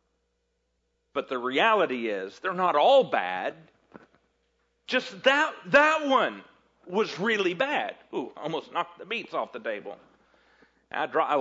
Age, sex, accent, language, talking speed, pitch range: 50-69, male, American, English, 135 wpm, 150-255 Hz